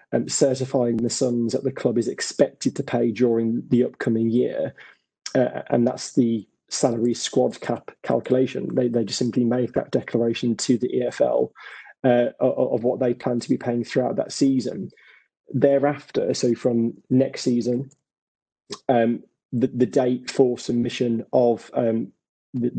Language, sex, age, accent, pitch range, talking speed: English, male, 20-39, British, 120-130 Hz, 155 wpm